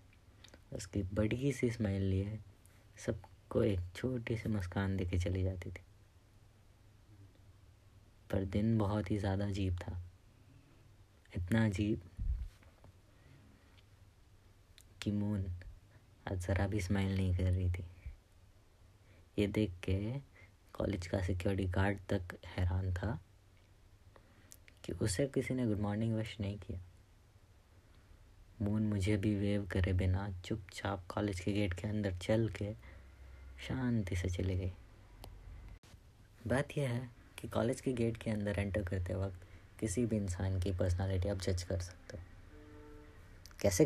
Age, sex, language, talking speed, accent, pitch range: 20-39, female, Hindi, 125 wpm, native, 95-105 Hz